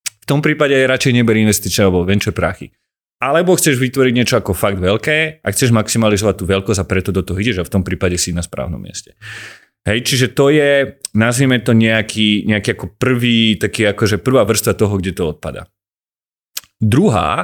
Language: Slovak